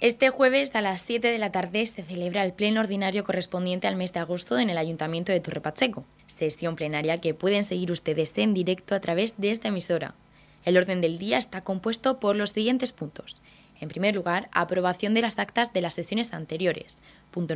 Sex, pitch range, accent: female, 170-205 Hz, Spanish